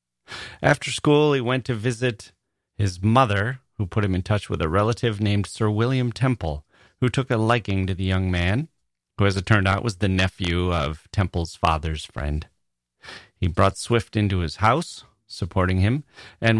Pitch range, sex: 85-115 Hz, male